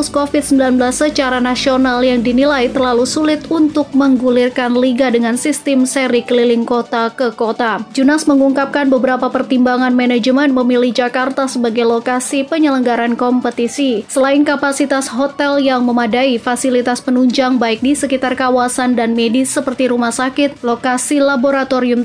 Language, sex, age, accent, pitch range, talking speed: Indonesian, female, 20-39, native, 245-275 Hz, 125 wpm